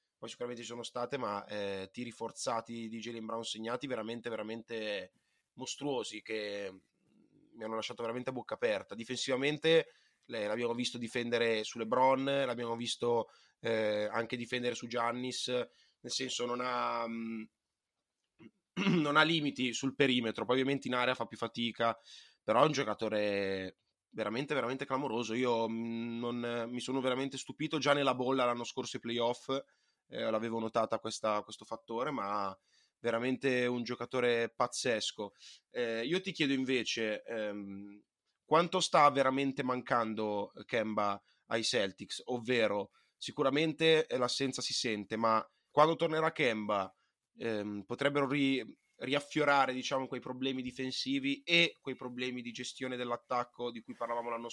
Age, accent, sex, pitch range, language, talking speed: 20-39, native, male, 115-130 Hz, Italian, 135 wpm